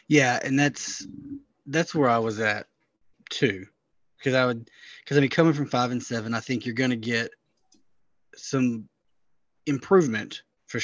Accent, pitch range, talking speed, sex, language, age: American, 115-130 Hz, 155 wpm, male, English, 20-39